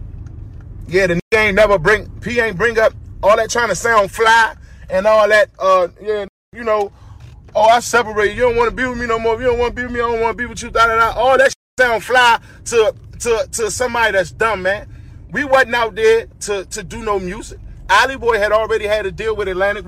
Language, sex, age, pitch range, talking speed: English, male, 20-39, 190-230 Hz, 240 wpm